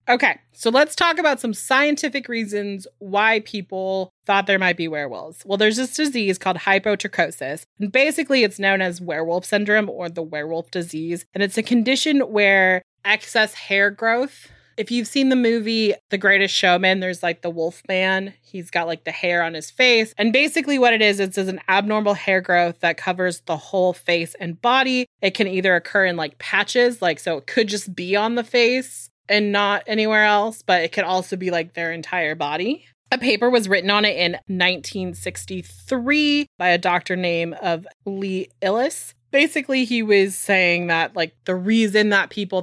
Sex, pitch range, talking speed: female, 170-215 Hz, 185 wpm